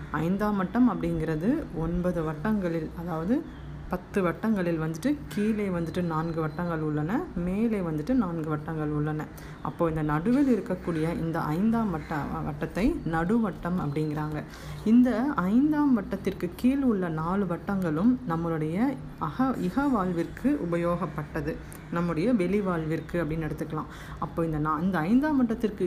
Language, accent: Tamil, native